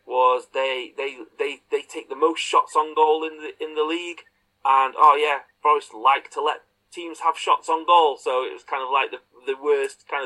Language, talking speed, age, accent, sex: English, 220 wpm, 30-49, British, male